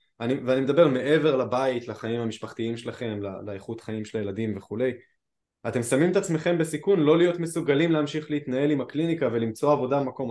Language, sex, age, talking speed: Hebrew, male, 20-39, 170 wpm